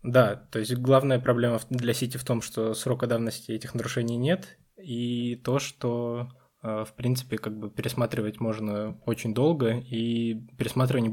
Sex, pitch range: male, 110-125 Hz